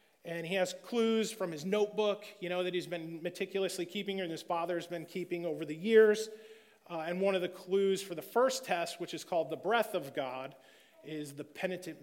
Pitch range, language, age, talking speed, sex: 150-190 Hz, English, 30-49, 210 wpm, male